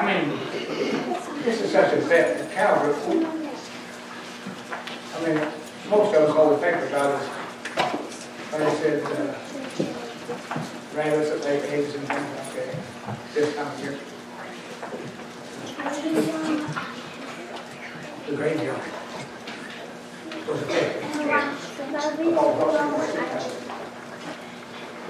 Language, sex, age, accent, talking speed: English, male, 60-79, American, 55 wpm